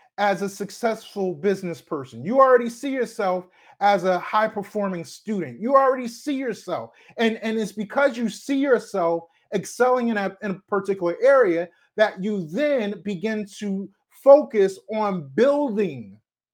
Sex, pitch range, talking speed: male, 195-245 Hz, 145 wpm